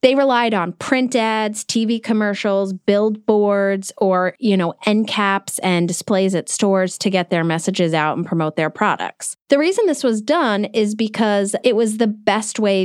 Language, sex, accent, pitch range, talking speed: English, female, American, 175-220 Hz, 180 wpm